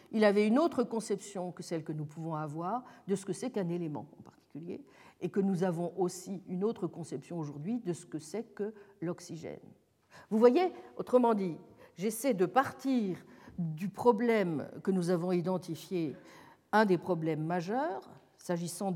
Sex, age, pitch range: female, 50-69, 170-235 Hz